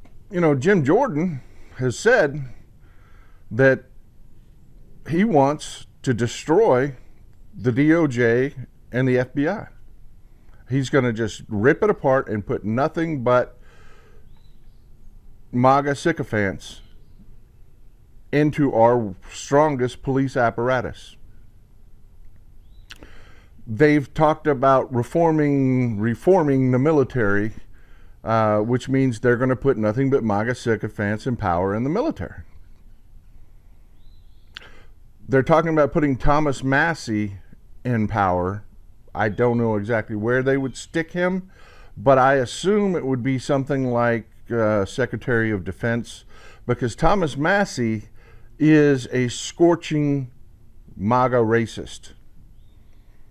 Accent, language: American, English